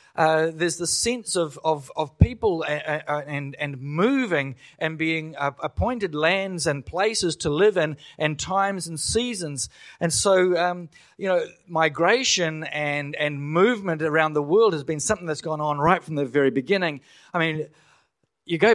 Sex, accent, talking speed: male, Australian, 175 wpm